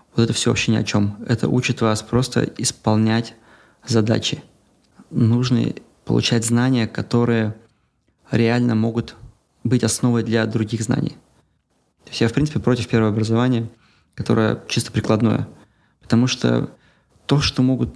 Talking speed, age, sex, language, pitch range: 135 wpm, 20-39, male, Russian, 110-125 Hz